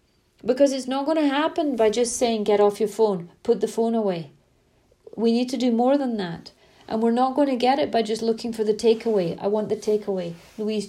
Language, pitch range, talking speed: English, 200-270 Hz, 230 wpm